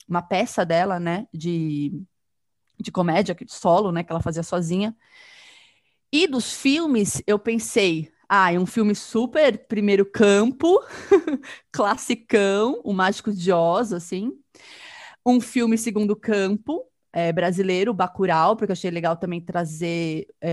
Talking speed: 125 wpm